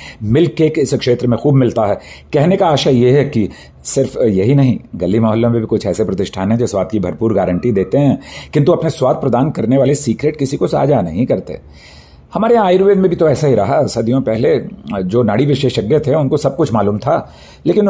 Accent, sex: native, male